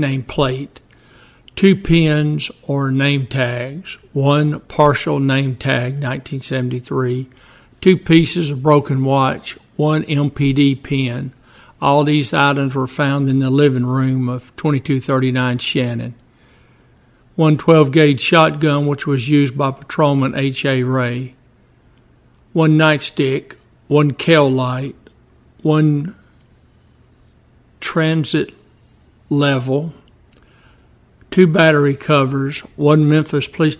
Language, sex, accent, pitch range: English, male, American, 130-150 Hz